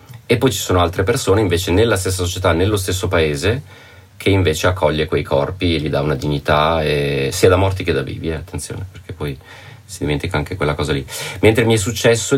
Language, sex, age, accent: Italian, male, 30-49, native